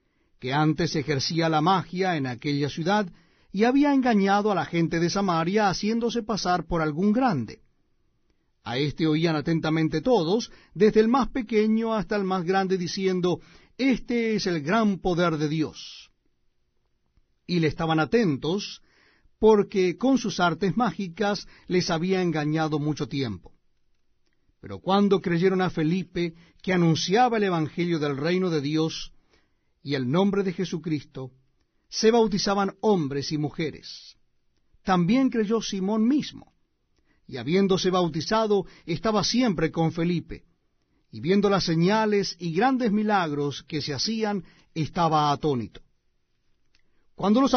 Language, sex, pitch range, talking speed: Spanish, male, 155-210 Hz, 130 wpm